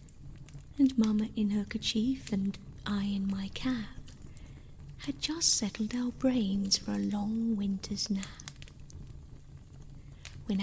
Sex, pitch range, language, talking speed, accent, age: female, 195-255 Hz, English, 120 wpm, British, 40-59